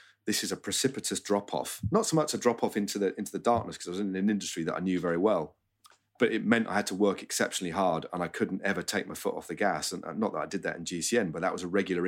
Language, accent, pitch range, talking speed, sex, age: English, British, 85-105 Hz, 290 wpm, male, 30-49